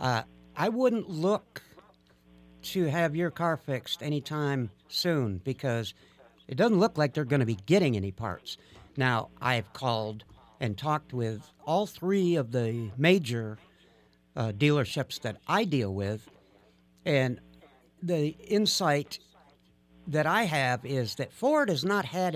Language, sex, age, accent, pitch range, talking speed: English, male, 60-79, American, 105-160 Hz, 140 wpm